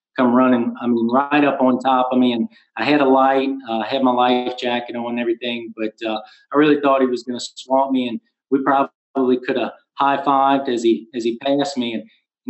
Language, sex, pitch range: English, male, 125-165 Hz